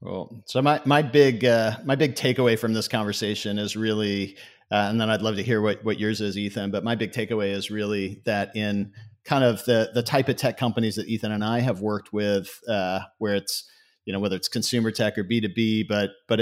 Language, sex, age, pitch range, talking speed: English, male, 40-59, 110-125 Hz, 235 wpm